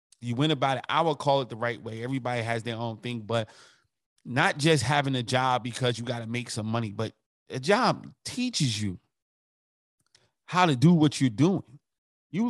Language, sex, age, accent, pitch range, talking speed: English, male, 30-49, American, 130-160 Hz, 195 wpm